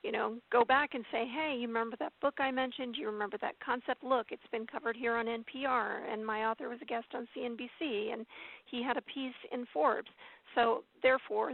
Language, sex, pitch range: English, female, 230-265 Hz